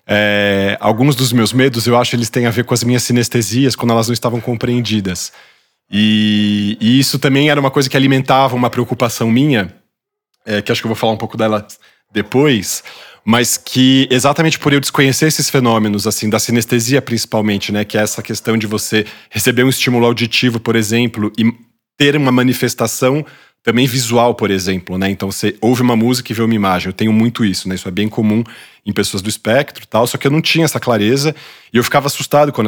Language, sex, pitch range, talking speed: Portuguese, male, 110-135 Hz, 210 wpm